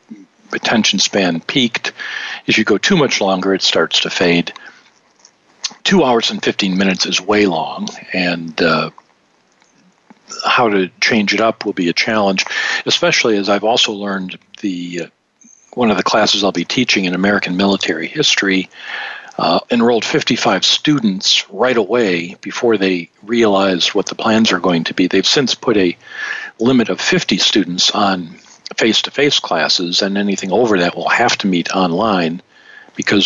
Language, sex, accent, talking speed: English, male, American, 155 wpm